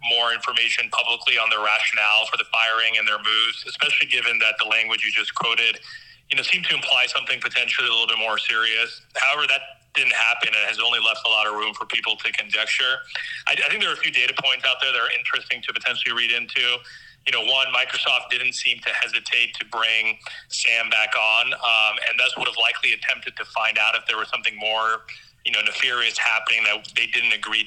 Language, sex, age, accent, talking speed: English, male, 30-49, American, 220 wpm